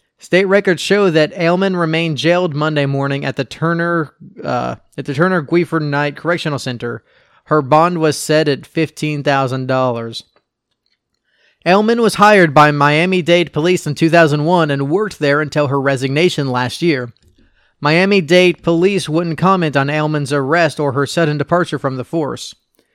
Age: 30-49